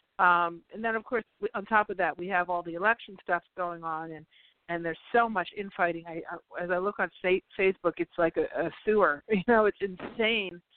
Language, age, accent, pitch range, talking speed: English, 50-69, American, 170-220 Hz, 215 wpm